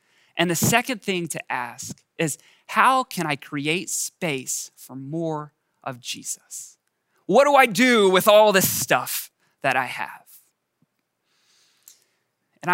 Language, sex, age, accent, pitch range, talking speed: English, male, 20-39, American, 145-215 Hz, 130 wpm